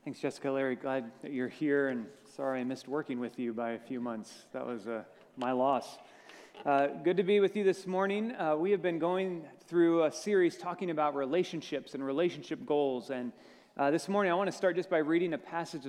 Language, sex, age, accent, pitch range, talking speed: English, male, 30-49, American, 135-175 Hz, 220 wpm